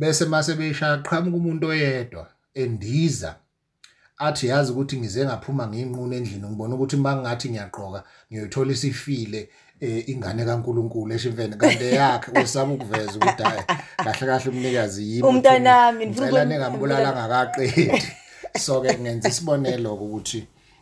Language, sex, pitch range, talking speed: English, male, 90-130 Hz, 120 wpm